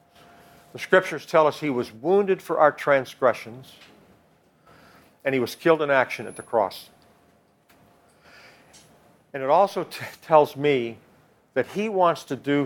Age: 50-69